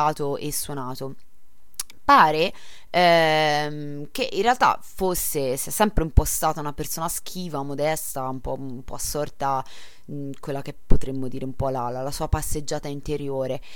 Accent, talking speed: native, 150 wpm